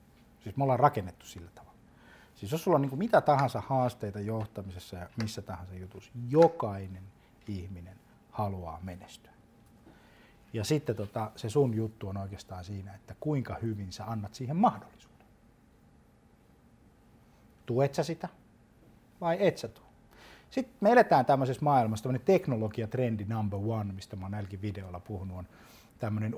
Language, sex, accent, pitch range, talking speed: Finnish, male, native, 105-140 Hz, 140 wpm